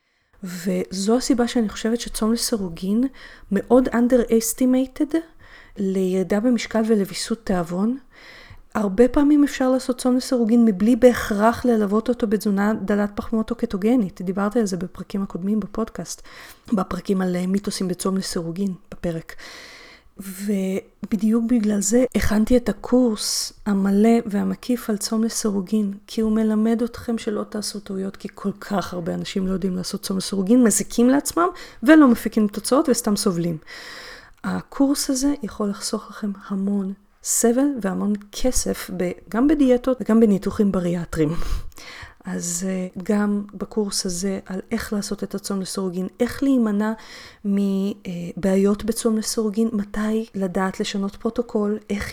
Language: Hebrew